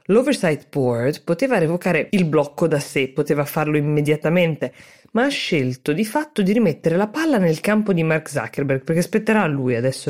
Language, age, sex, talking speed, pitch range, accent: Italian, 20-39, female, 180 wpm, 140-205 Hz, native